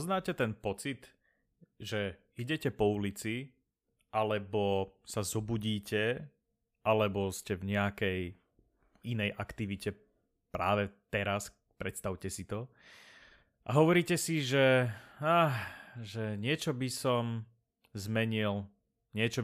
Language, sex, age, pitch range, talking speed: Slovak, male, 30-49, 100-120 Hz, 100 wpm